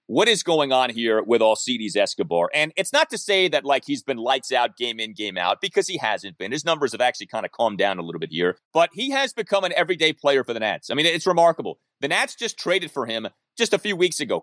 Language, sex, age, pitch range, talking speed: English, male, 30-49, 125-190 Hz, 265 wpm